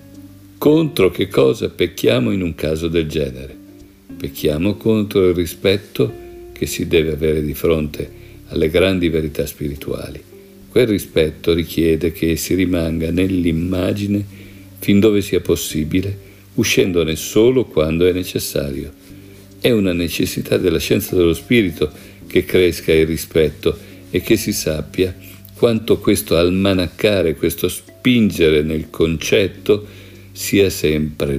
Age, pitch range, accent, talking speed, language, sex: 50-69, 80-100 Hz, native, 120 wpm, Italian, male